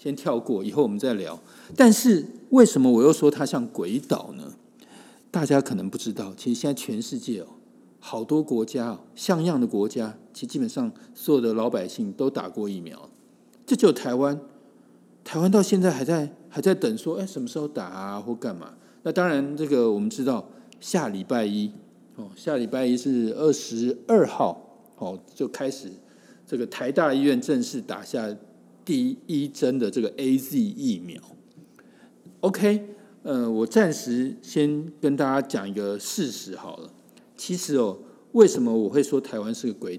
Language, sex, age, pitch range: Chinese, male, 50-69, 120-200 Hz